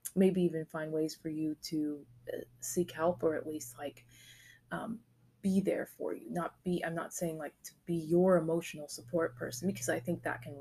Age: 20-39